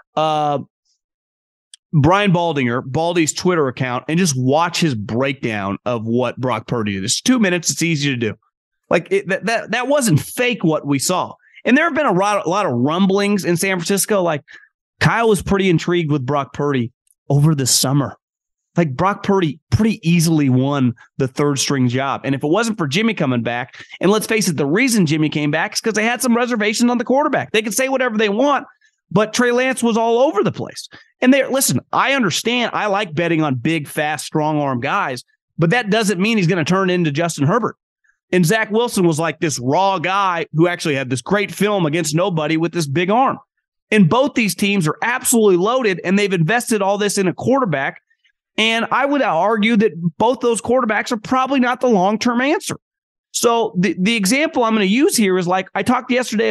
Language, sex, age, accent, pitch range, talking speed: English, male, 30-49, American, 150-225 Hz, 205 wpm